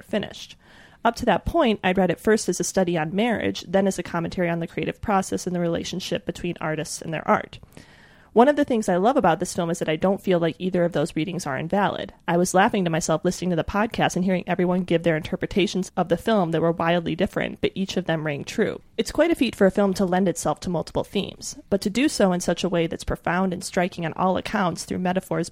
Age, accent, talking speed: 30-49, American, 255 wpm